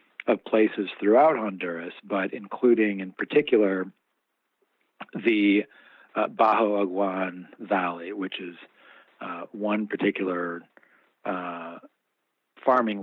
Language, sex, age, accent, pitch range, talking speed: English, male, 40-59, American, 95-110 Hz, 90 wpm